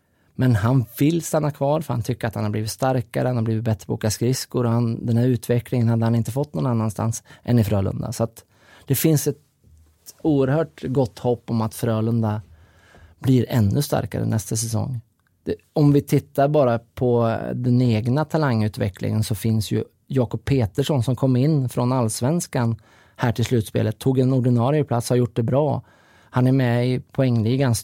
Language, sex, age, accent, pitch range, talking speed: English, male, 20-39, Norwegian, 110-130 Hz, 185 wpm